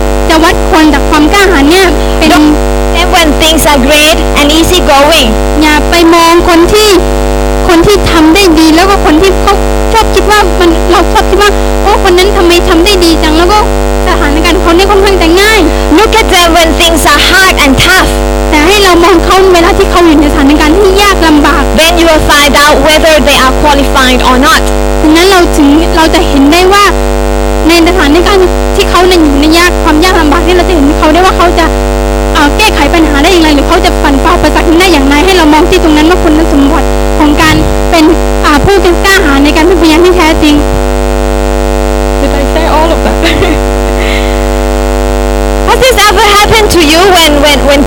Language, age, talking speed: English, 20-39, 55 wpm